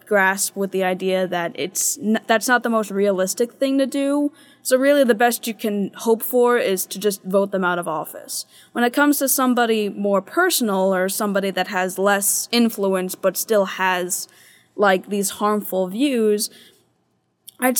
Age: 20-39